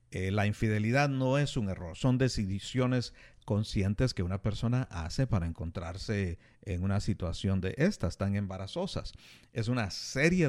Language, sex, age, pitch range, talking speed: Spanish, male, 50-69, 100-125 Hz, 150 wpm